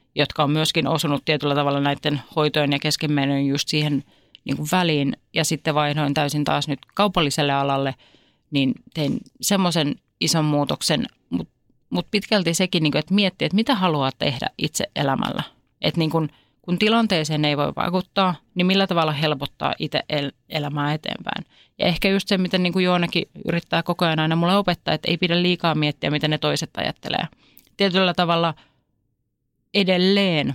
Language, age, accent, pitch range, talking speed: Finnish, 30-49, native, 140-175 Hz, 165 wpm